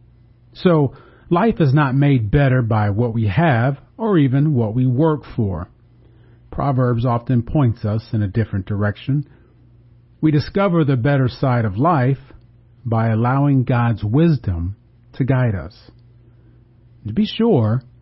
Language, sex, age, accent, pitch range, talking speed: English, male, 40-59, American, 115-145 Hz, 140 wpm